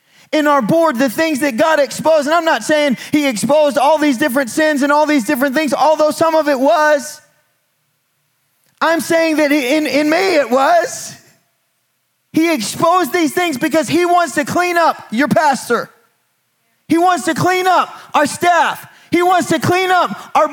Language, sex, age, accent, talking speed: English, male, 30-49, American, 180 wpm